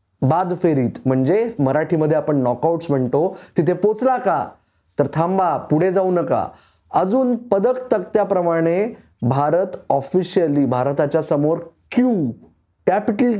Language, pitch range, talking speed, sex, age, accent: Marathi, 150-205 Hz, 110 wpm, male, 20-39, native